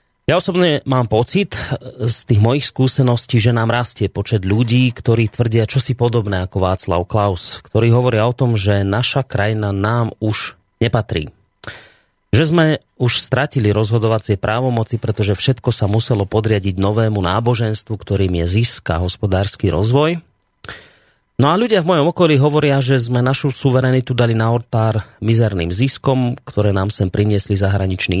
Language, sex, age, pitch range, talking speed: Slovak, male, 30-49, 105-125 Hz, 150 wpm